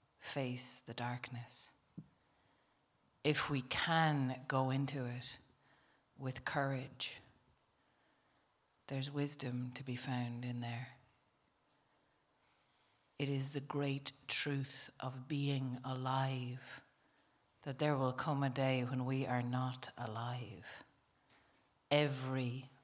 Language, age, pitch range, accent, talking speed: English, 40-59, 125-140 Hz, Irish, 100 wpm